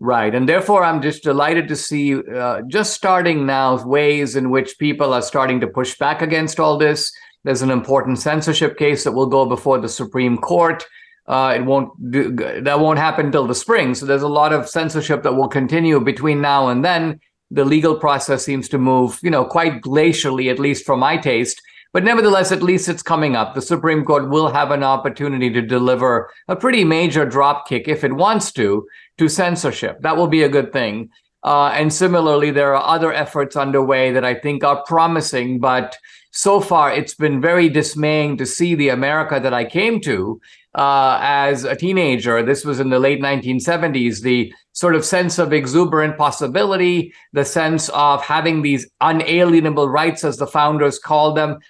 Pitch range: 135-165 Hz